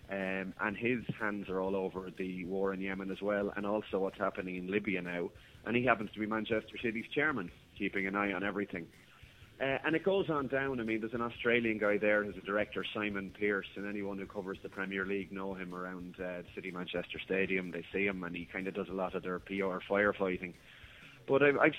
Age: 30-49